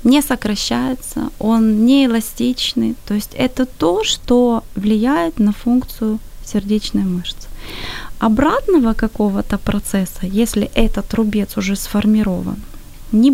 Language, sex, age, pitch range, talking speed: Ukrainian, female, 20-39, 200-250 Hz, 105 wpm